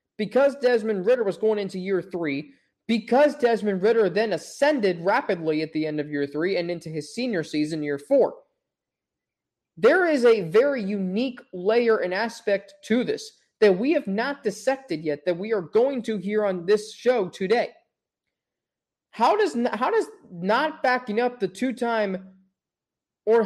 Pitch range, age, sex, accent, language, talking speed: 210-260 Hz, 20-39, male, American, English, 160 wpm